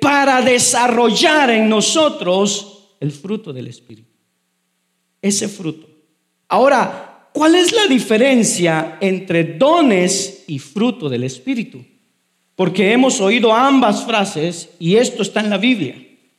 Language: Spanish